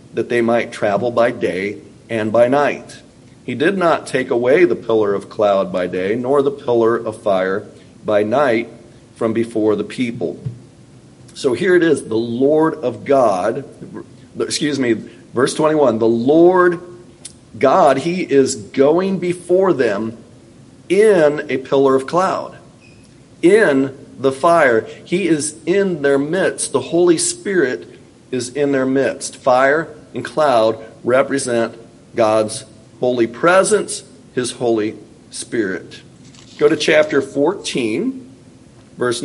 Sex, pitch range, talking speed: male, 115-160 Hz, 130 wpm